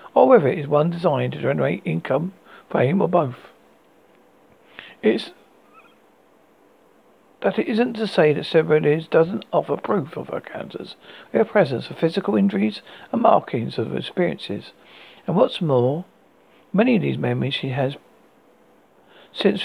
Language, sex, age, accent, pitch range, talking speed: English, male, 60-79, British, 145-200 Hz, 145 wpm